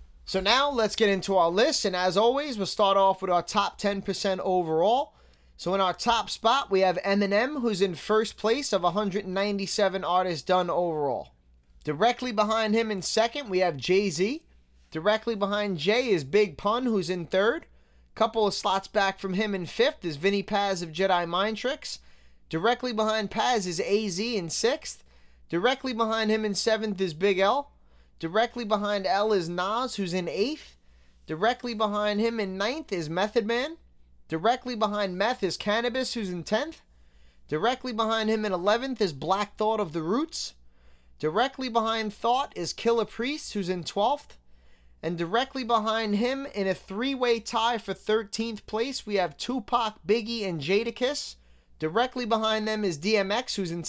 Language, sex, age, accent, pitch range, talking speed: English, male, 20-39, American, 175-225 Hz, 170 wpm